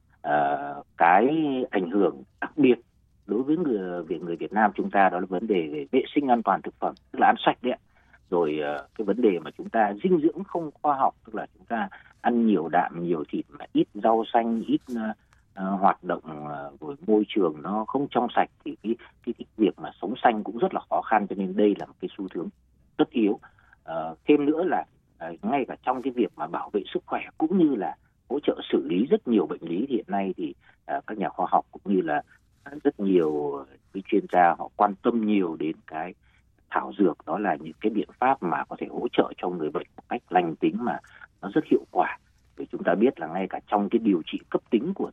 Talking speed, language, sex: 235 wpm, Vietnamese, male